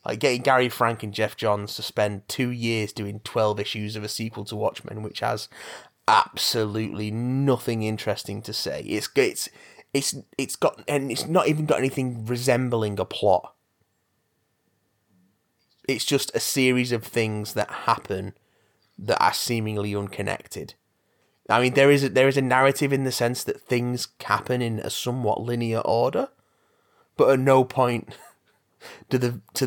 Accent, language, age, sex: British, English, 30-49, male